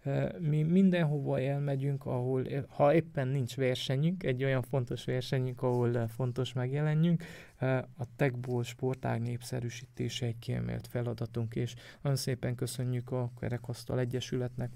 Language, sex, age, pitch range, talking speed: Hungarian, male, 20-39, 120-130 Hz, 120 wpm